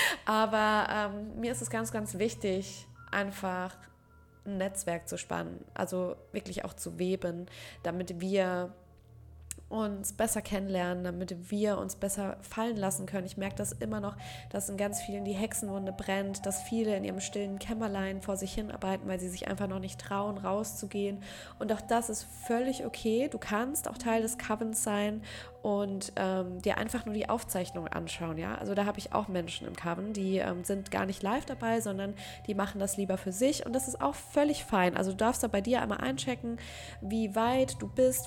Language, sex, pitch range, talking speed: German, female, 190-225 Hz, 190 wpm